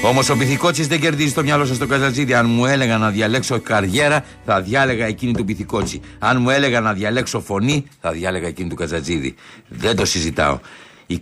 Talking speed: 195 wpm